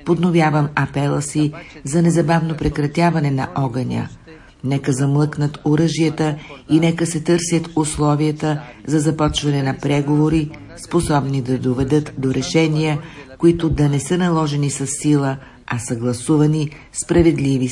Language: Bulgarian